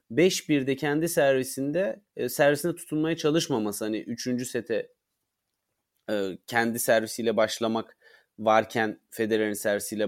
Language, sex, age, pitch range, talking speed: Turkish, male, 30-49, 120-165 Hz, 95 wpm